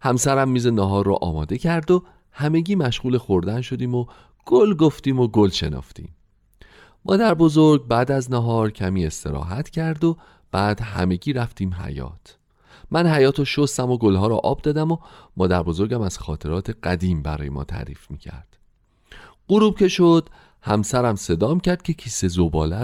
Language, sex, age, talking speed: Persian, male, 40-59, 150 wpm